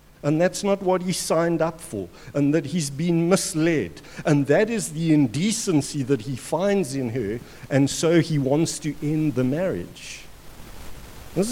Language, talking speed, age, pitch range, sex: English, 165 wpm, 60-79, 125-165 Hz, male